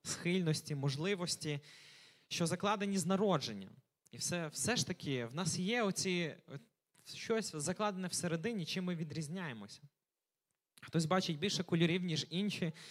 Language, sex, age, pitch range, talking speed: Ukrainian, male, 20-39, 145-185 Hz, 125 wpm